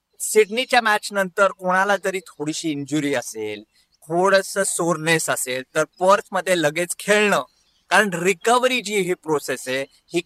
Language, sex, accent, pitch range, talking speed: Marathi, male, native, 160-210 Hz, 135 wpm